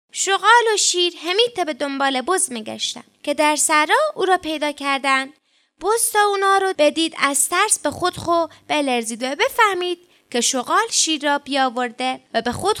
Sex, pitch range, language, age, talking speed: female, 270-375 Hz, Persian, 20-39, 165 wpm